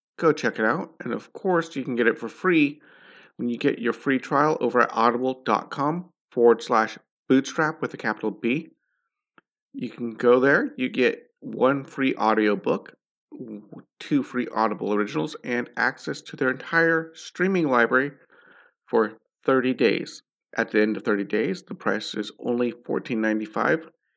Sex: male